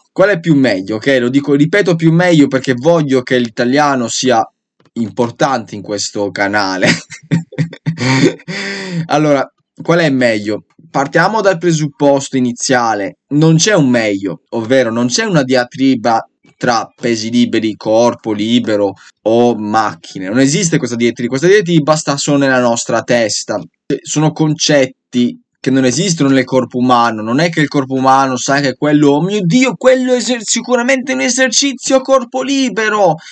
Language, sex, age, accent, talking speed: Italian, male, 20-39, native, 145 wpm